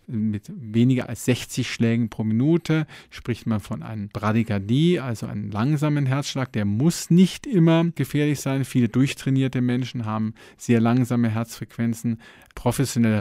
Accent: German